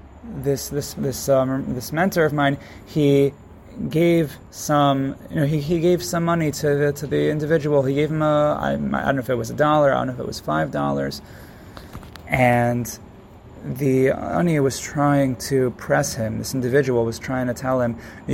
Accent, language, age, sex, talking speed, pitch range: American, English, 30-49, male, 195 wpm, 105-135 Hz